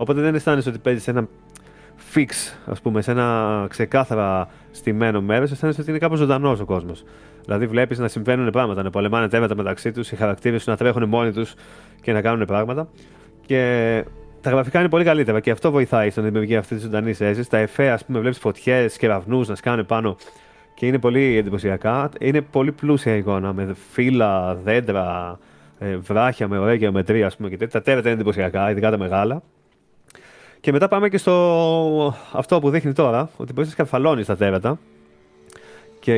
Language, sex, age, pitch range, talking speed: Greek, male, 30-49, 105-130 Hz, 180 wpm